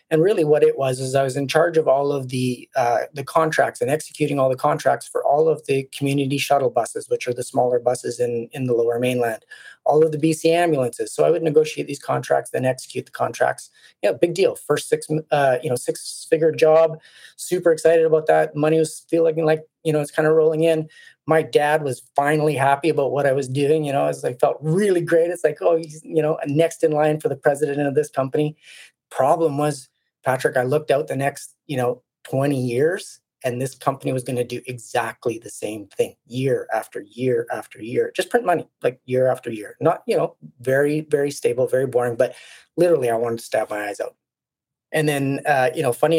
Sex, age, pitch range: male, 30-49, 130-160 Hz